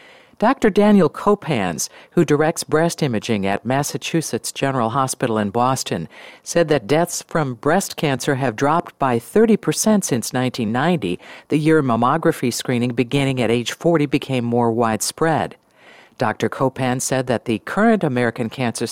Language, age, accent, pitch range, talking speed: English, 50-69, American, 125-170 Hz, 145 wpm